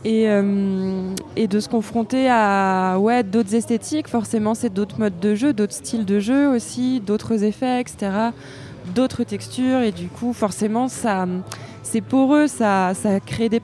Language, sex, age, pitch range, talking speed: French, female, 20-39, 185-225 Hz, 165 wpm